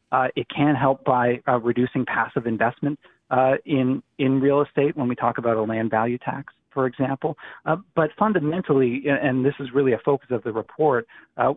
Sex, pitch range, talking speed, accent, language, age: male, 115-140 Hz, 190 wpm, American, English, 30-49